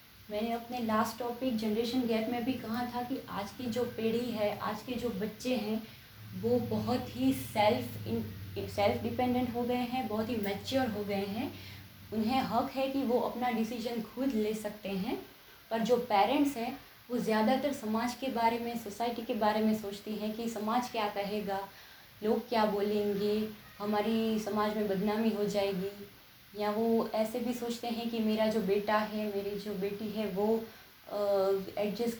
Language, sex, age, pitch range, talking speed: Hindi, female, 20-39, 205-245 Hz, 175 wpm